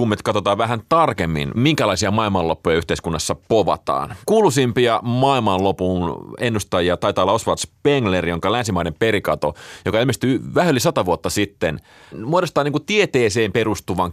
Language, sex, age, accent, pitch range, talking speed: Finnish, male, 30-49, native, 90-130 Hz, 115 wpm